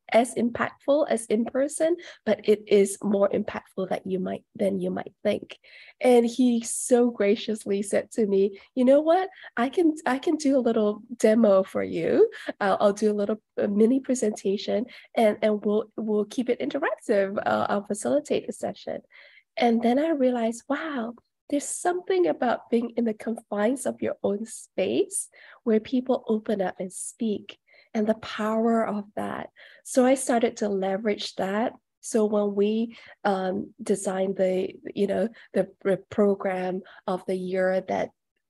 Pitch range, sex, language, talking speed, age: 190-235 Hz, female, English, 160 wpm, 20-39